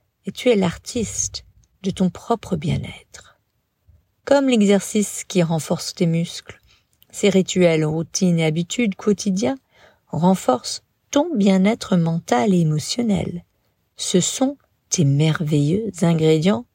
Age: 50-69